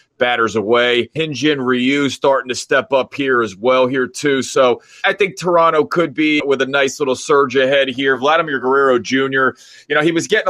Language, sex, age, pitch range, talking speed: English, male, 30-49, 130-165 Hz, 195 wpm